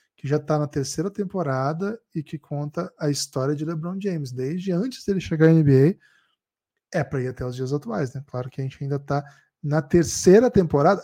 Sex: male